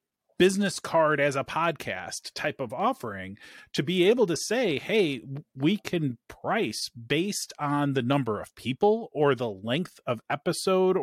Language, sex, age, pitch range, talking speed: English, male, 30-49, 145-215 Hz, 150 wpm